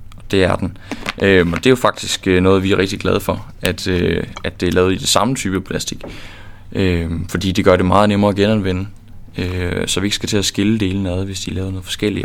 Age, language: 20-39, Danish